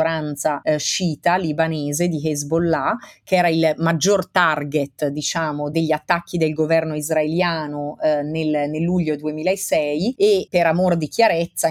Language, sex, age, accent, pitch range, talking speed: Italian, female, 30-49, native, 155-185 Hz, 130 wpm